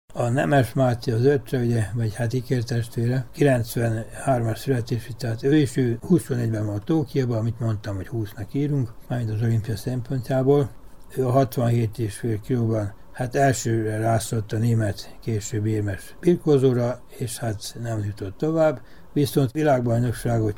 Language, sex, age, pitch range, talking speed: Hungarian, male, 60-79, 105-130 Hz, 135 wpm